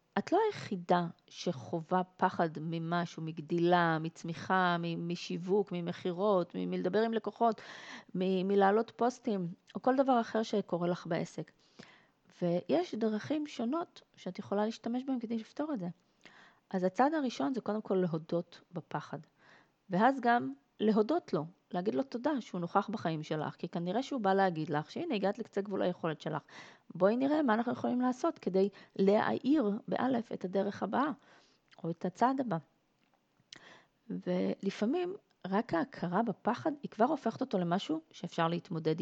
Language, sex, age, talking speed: Hebrew, female, 30-49, 145 wpm